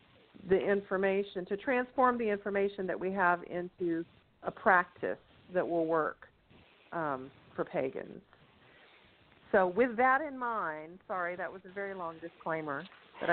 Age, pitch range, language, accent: 50-69, 165-195 Hz, English, American